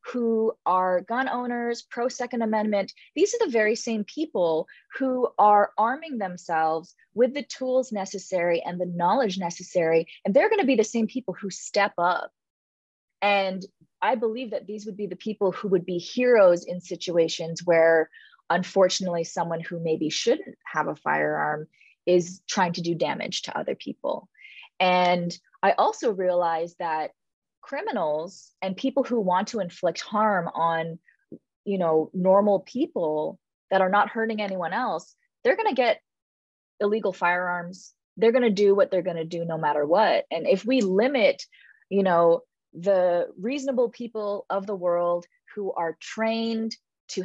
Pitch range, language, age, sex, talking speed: 175-225 Hz, English, 20-39, female, 160 wpm